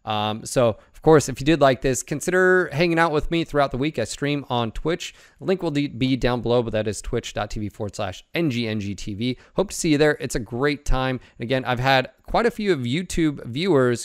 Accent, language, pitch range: American, English, 115-155 Hz